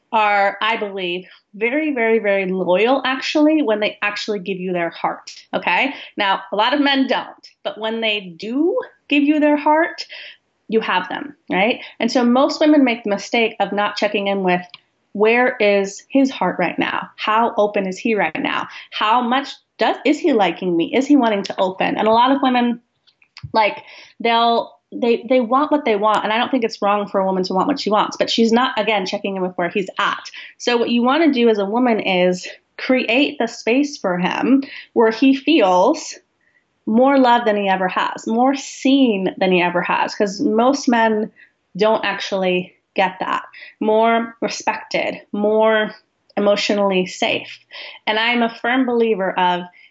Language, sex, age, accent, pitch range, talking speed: English, female, 30-49, American, 200-260 Hz, 185 wpm